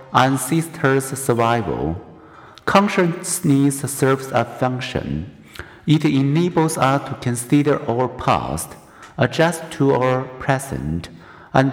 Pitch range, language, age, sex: 120-150 Hz, Chinese, 50-69, male